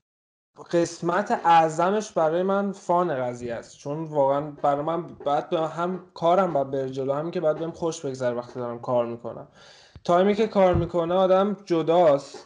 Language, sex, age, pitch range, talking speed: Persian, male, 20-39, 130-170 Hz, 155 wpm